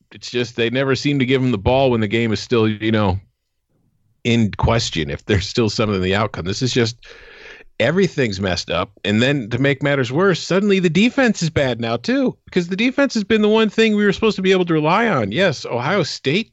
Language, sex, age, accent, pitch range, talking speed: English, male, 40-59, American, 115-160 Hz, 235 wpm